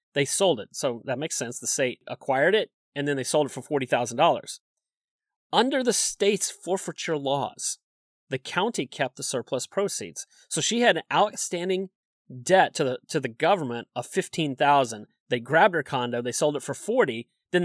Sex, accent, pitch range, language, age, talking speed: male, American, 130-180 Hz, English, 30-49, 180 wpm